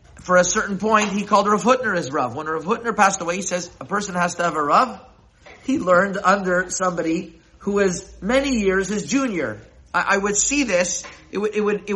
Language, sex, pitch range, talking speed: English, male, 165-210 Hz, 220 wpm